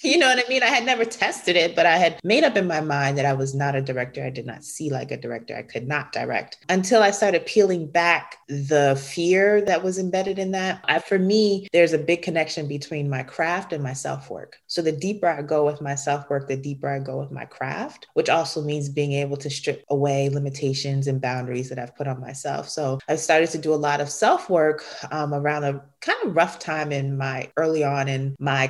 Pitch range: 135-170 Hz